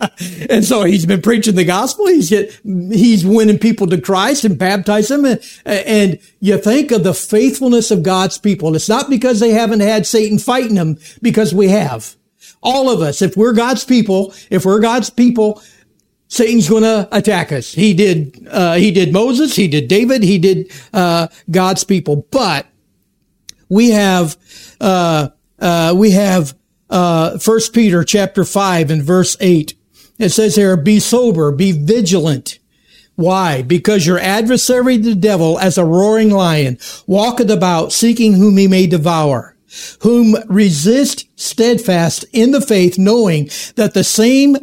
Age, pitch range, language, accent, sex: 60-79, 180-225 Hz, Japanese, American, male